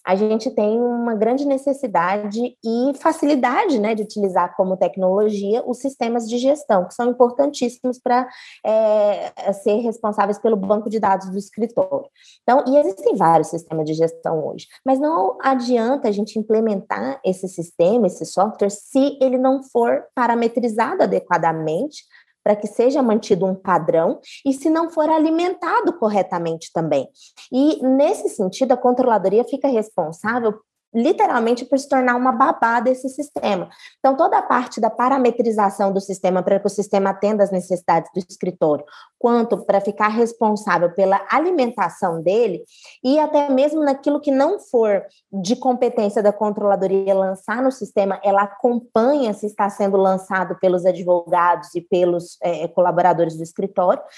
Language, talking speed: Portuguese, 145 wpm